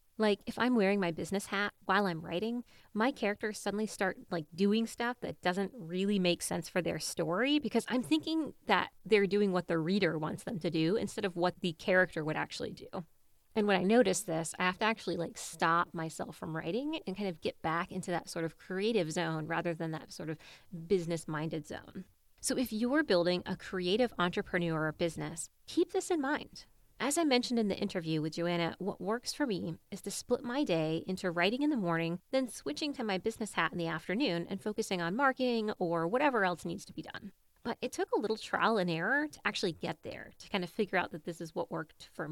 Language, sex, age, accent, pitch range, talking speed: English, female, 30-49, American, 175-235 Hz, 225 wpm